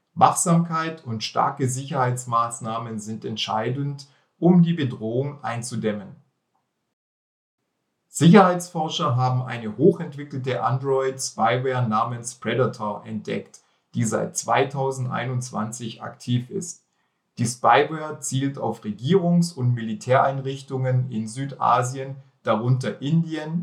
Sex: male